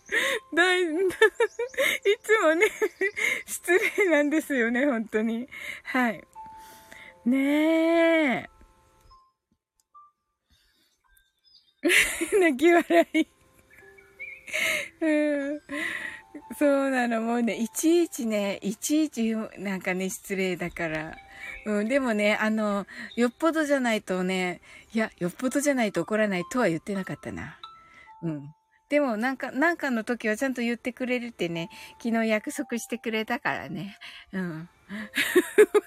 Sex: female